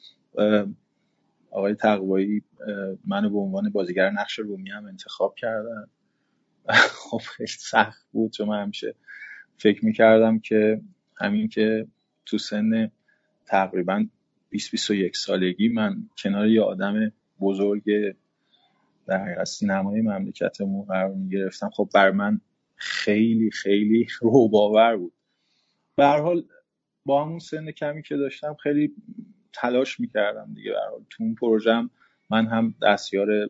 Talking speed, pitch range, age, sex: 115 wpm, 105-145 Hz, 30-49, male